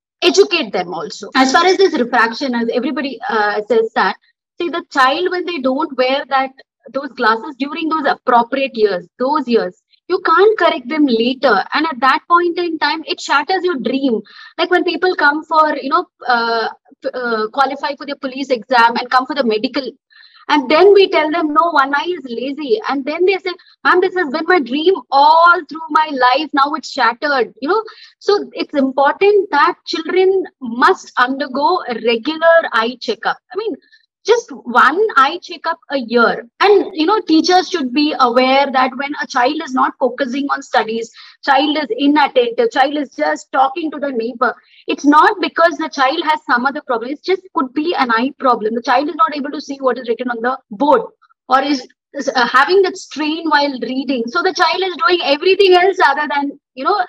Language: English